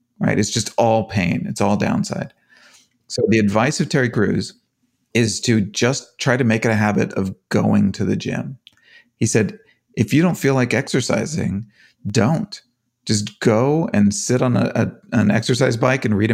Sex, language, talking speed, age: male, English, 175 wpm, 40-59